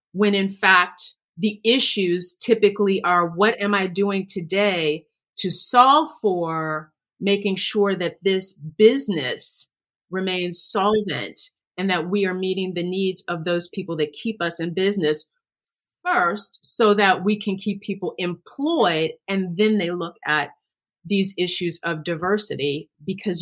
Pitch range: 165-200 Hz